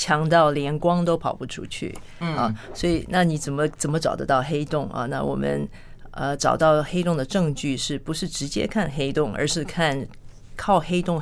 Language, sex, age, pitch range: Chinese, female, 40-59, 140-170 Hz